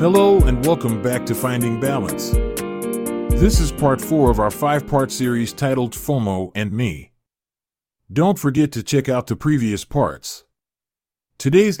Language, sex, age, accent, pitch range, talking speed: English, male, 40-59, American, 105-140 Hz, 140 wpm